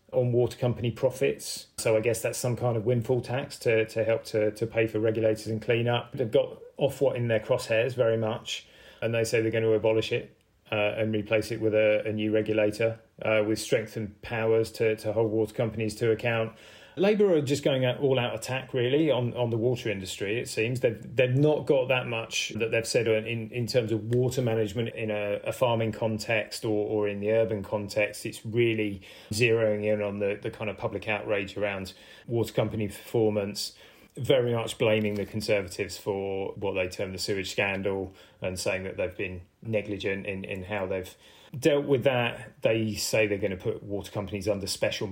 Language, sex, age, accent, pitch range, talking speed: English, male, 30-49, British, 105-115 Hz, 205 wpm